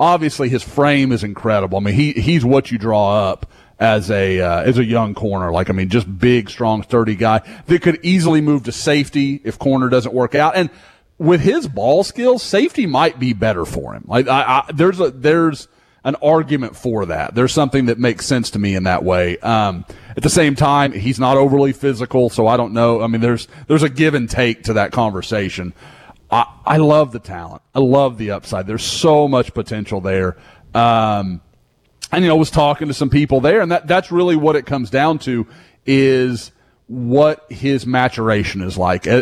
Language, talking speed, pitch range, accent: English, 205 wpm, 110-140 Hz, American